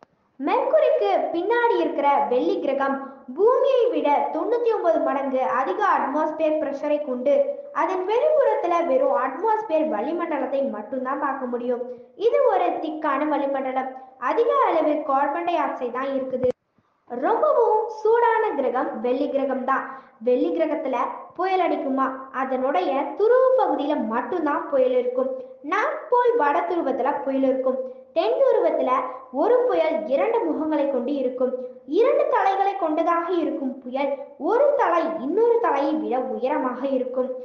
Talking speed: 80 wpm